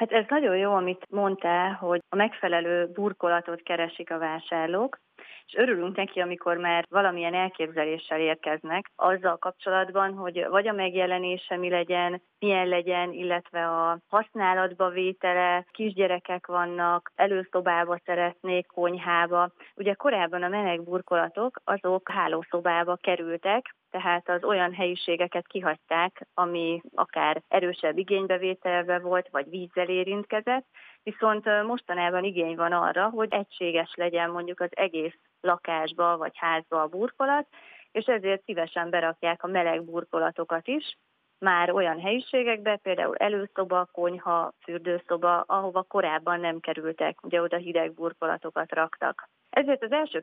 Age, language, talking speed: 30-49, Hungarian, 125 wpm